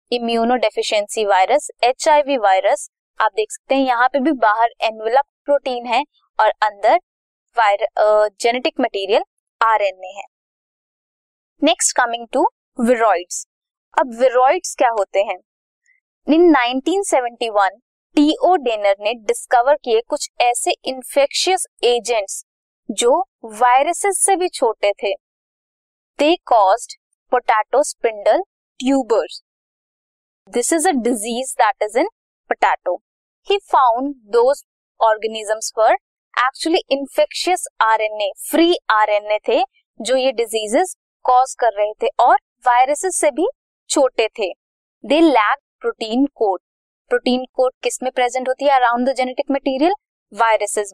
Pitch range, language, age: 230-325 Hz, Hindi, 20-39